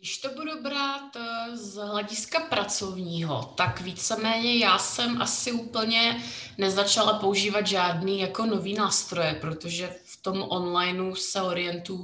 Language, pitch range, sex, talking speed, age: Czech, 180-225 Hz, female, 125 wpm, 20-39